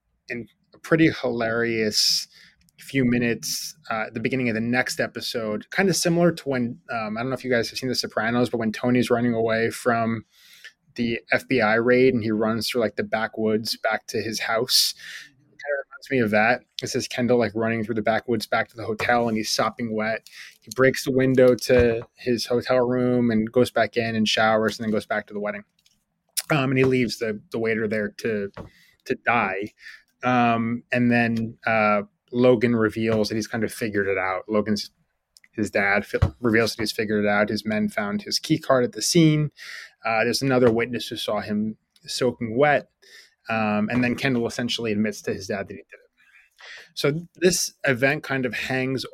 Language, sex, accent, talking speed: English, male, American, 200 wpm